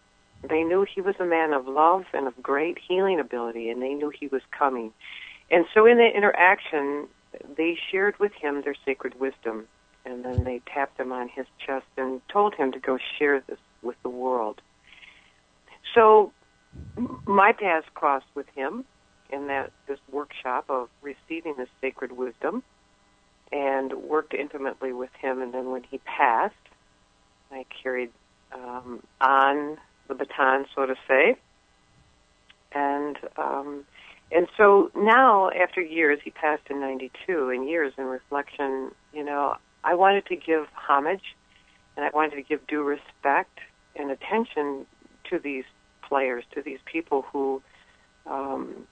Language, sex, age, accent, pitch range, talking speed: English, female, 60-79, American, 130-165 Hz, 150 wpm